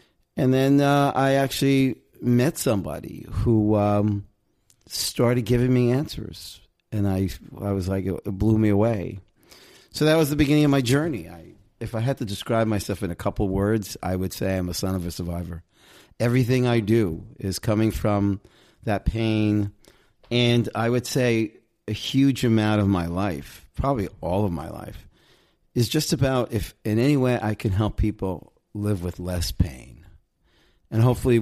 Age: 40-59